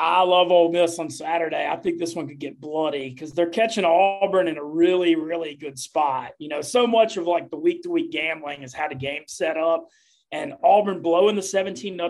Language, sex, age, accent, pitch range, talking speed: English, male, 30-49, American, 150-185 Hz, 205 wpm